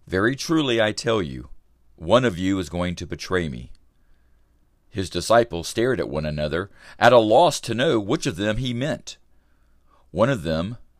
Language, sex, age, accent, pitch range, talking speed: English, male, 50-69, American, 70-105 Hz, 175 wpm